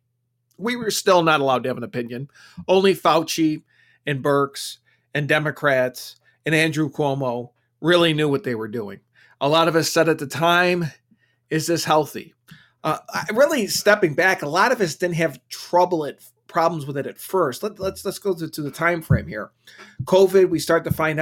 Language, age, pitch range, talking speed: English, 40-59, 135-165 Hz, 185 wpm